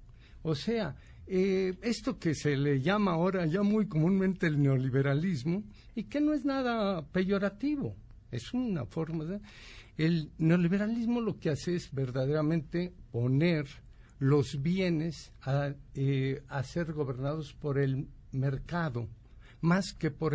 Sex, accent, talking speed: male, Mexican, 135 wpm